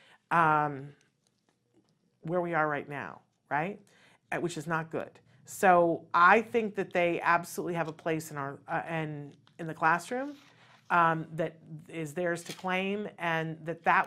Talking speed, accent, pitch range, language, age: 160 wpm, American, 155-190 Hz, English, 40-59